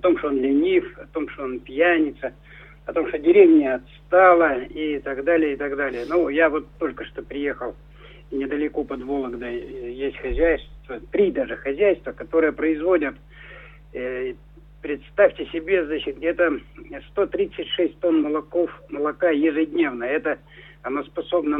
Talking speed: 135 wpm